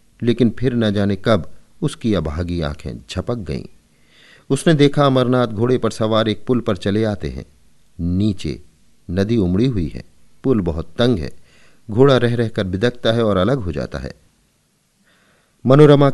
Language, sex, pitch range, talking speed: Hindi, male, 90-120 Hz, 155 wpm